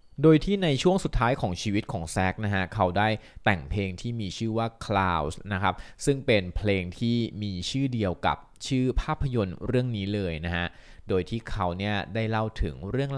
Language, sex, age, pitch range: Thai, male, 20-39, 95-120 Hz